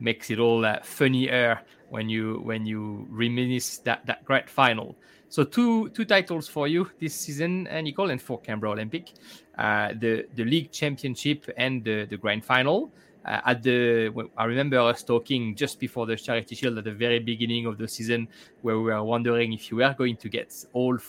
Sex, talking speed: male, 195 wpm